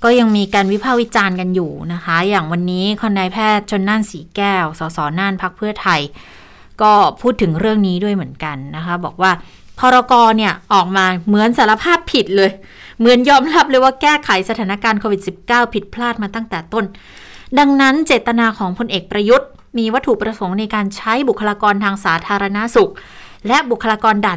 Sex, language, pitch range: female, Thai, 195-245 Hz